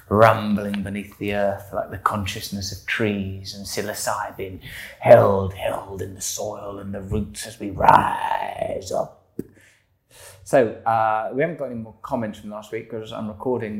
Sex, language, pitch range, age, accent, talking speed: male, English, 105-130 Hz, 20-39, British, 160 wpm